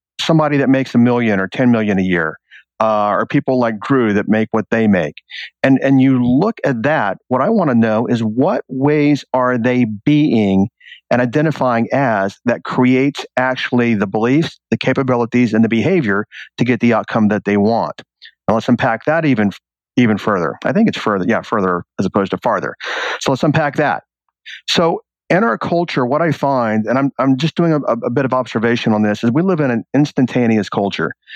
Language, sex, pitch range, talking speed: English, male, 110-140 Hz, 200 wpm